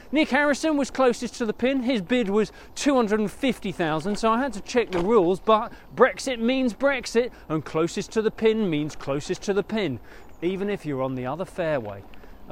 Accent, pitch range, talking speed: British, 170-230 Hz, 185 wpm